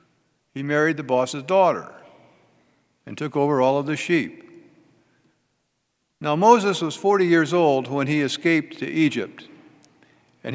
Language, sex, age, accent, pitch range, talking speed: English, male, 60-79, American, 135-170 Hz, 135 wpm